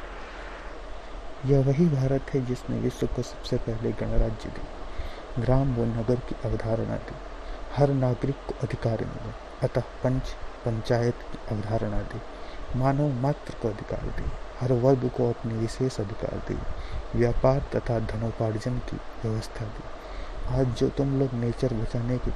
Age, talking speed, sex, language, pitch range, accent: 30-49, 140 wpm, male, Hindi, 115-125 Hz, native